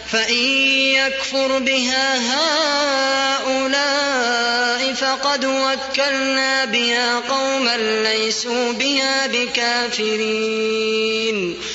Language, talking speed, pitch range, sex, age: Arabic, 55 wpm, 240-285 Hz, female, 20-39